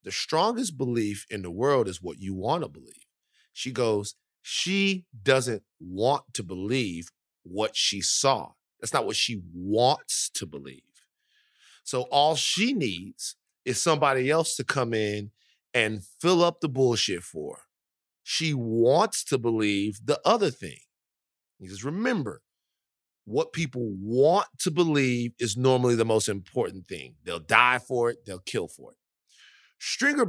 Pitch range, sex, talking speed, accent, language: 105-150 Hz, male, 150 wpm, American, English